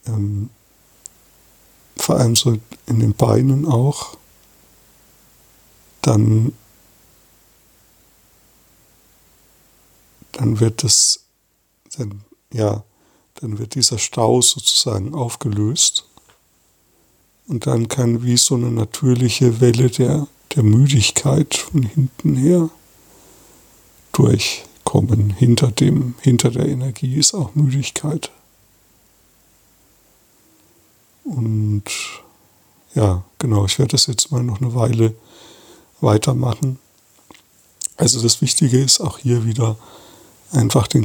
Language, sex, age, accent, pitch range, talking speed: German, male, 60-79, German, 105-135 Hz, 90 wpm